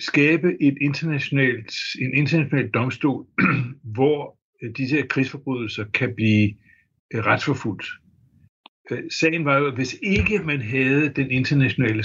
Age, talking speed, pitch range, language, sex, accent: 60-79, 115 wpm, 110-140 Hz, Danish, male, native